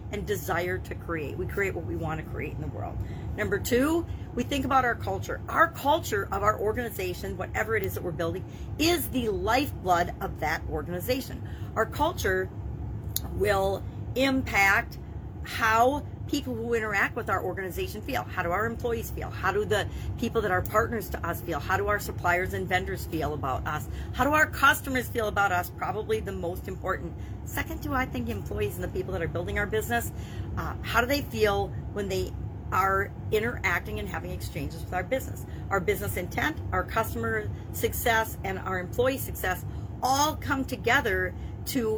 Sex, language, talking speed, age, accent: female, English, 180 wpm, 40-59, American